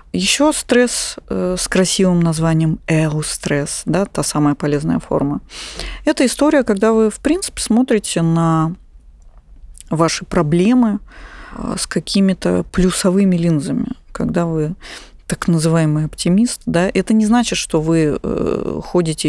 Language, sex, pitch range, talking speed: Russian, female, 160-210 Hz, 125 wpm